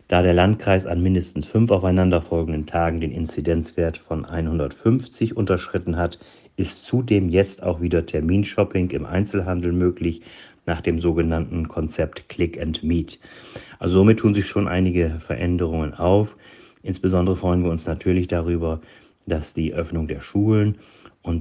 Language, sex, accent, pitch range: German, male, German, 80-90 Hz